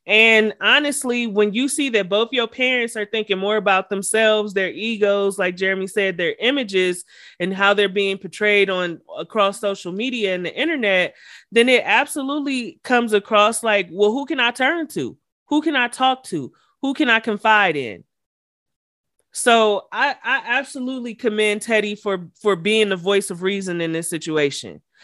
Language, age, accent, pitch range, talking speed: English, 30-49, American, 190-235 Hz, 170 wpm